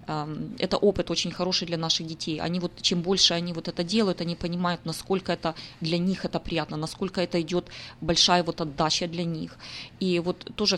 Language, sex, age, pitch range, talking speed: Russian, female, 20-39, 165-185 Hz, 190 wpm